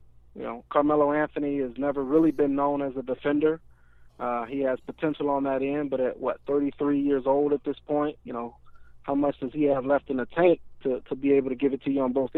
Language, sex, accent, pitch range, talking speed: English, male, American, 135-180 Hz, 240 wpm